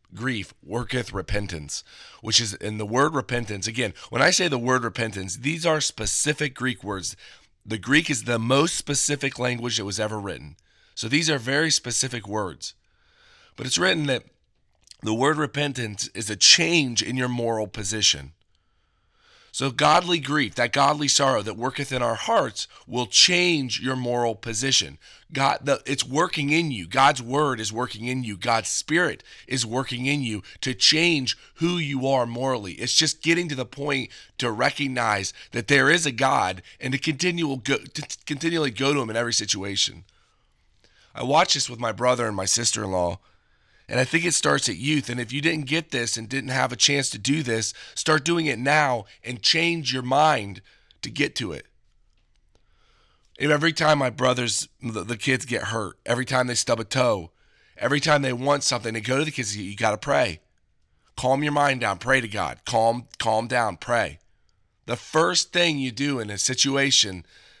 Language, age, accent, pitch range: English, 30-49, American, 110-145 Hz